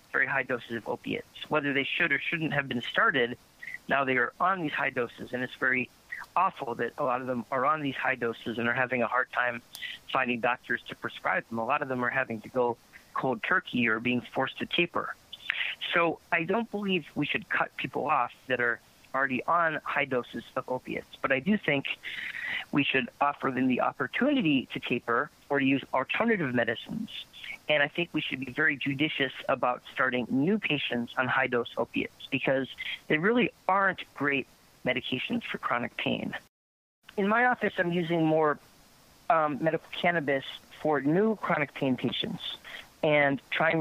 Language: English